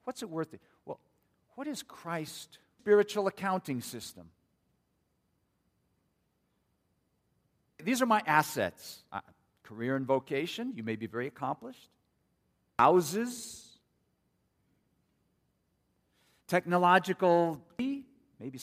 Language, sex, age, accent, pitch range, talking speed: English, male, 50-69, American, 110-170 Hz, 85 wpm